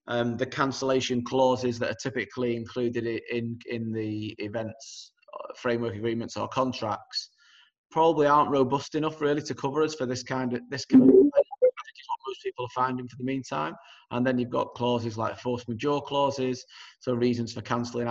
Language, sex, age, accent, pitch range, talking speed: English, male, 30-49, British, 115-130 Hz, 175 wpm